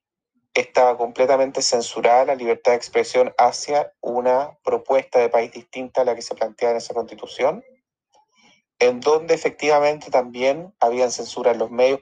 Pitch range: 120-180 Hz